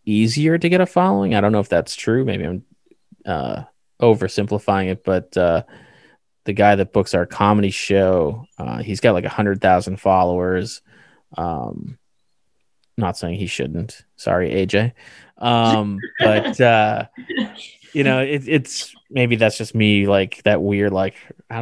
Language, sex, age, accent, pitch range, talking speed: English, male, 20-39, American, 100-120 Hz, 155 wpm